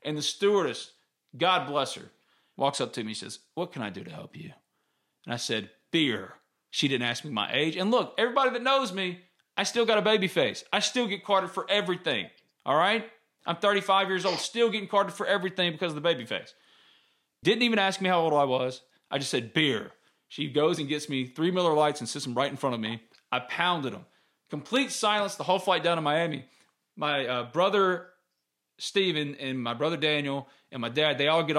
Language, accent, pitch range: English, American, 140-200 Hz